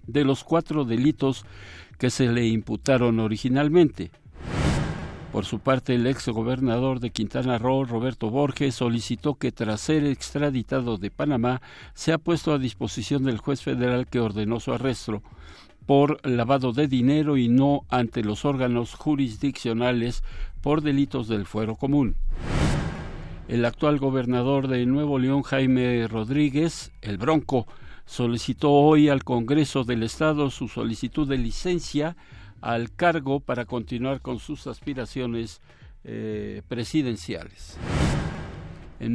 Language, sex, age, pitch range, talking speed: Spanish, male, 60-79, 115-140 Hz, 125 wpm